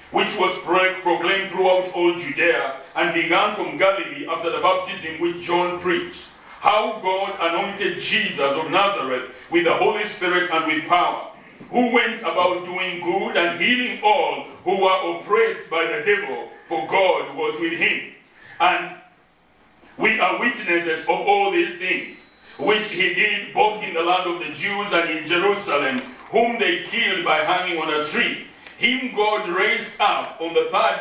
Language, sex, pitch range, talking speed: English, male, 170-245 Hz, 165 wpm